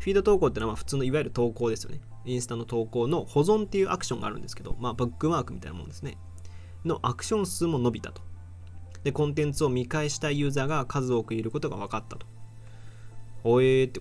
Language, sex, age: Japanese, male, 20-39